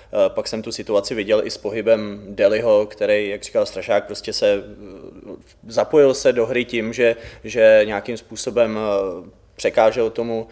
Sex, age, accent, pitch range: male, 20-39, native, 105-120 Hz